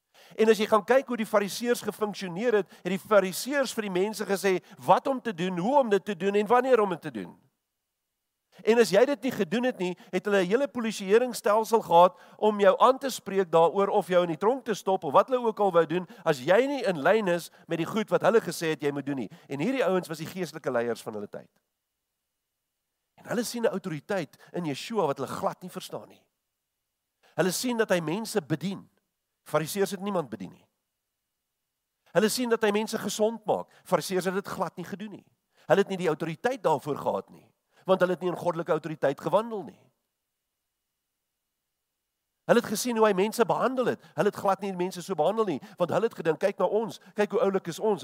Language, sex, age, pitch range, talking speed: English, male, 50-69, 170-215 Hz, 215 wpm